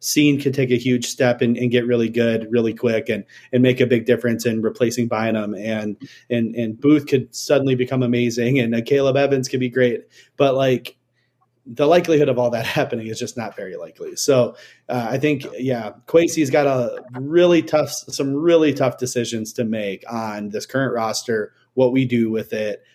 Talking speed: 200 wpm